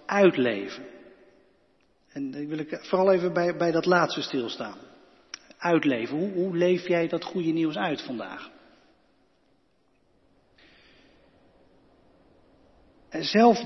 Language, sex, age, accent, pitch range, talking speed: Dutch, male, 40-59, Dutch, 150-200 Hz, 100 wpm